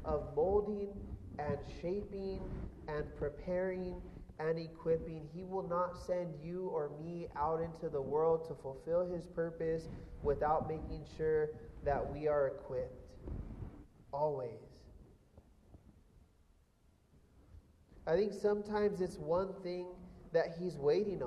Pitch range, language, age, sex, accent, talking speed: 155-205 Hz, English, 30-49, male, American, 115 wpm